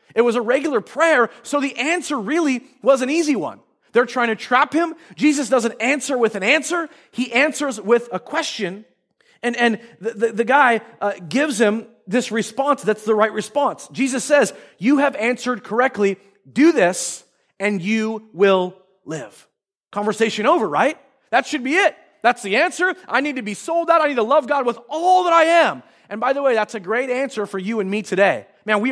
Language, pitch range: English, 205-280 Hz